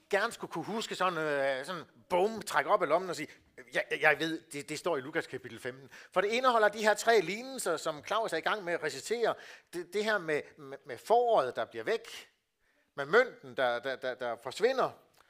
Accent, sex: native, male